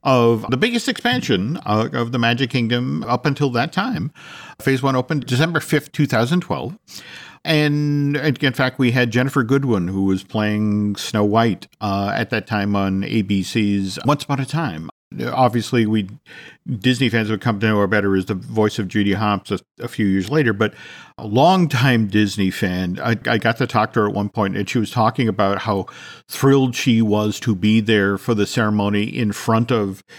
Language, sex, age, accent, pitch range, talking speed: English, male, 50-69, American, 105-145 Hz, 190 wpm